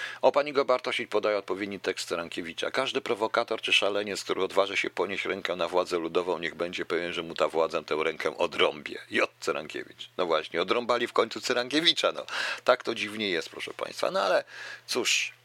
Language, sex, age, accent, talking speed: Polish, male, 50-69, native, 180 wpm